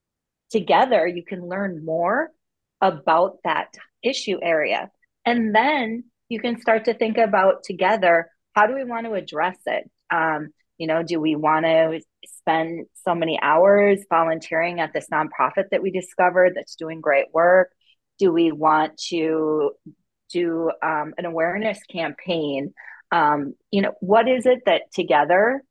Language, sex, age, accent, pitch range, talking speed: English, female, 30-49, American, 165-225 Hz, 150 wpm